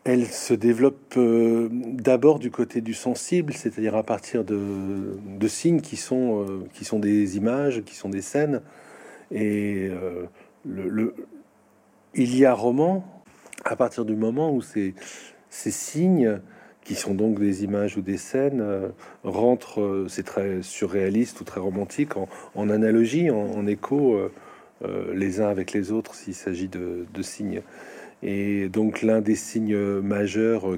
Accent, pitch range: French, 100-120 Hz